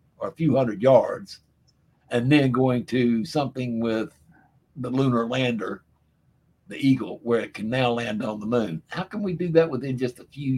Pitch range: 115-155 Hz